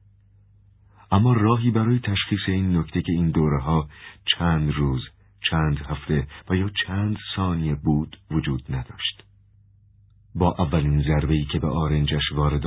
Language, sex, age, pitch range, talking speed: Persian, male, 50-69, 75-100 Hz, 130 wpm